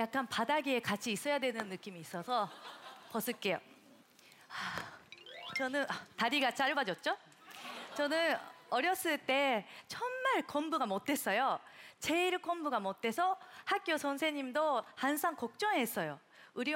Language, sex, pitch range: Korean, female, 230-325 Hz